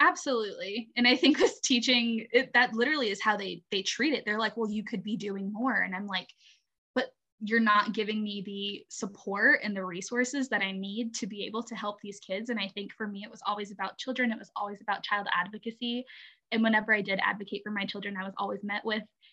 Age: 10-29